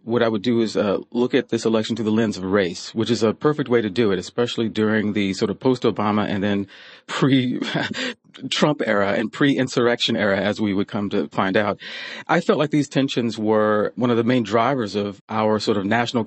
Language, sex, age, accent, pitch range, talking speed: English, male, 40-59, American, 110-135 Hz, 220 wpm